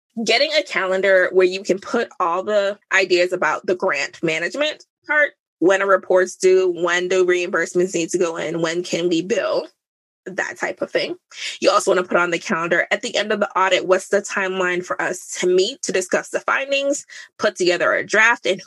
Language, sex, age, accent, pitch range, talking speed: English, female, 20-39, American, 180-280 Hz, 205 wpm